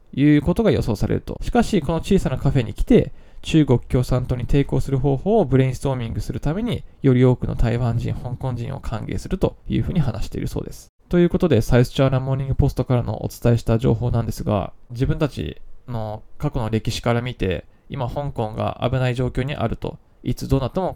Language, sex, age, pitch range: Japanese, male, 20-39, 115-145 Hz